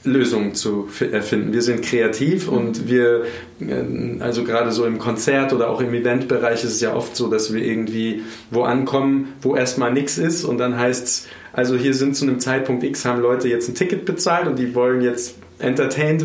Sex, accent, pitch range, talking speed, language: male, German, 105-125 Hz, 195 wpm, German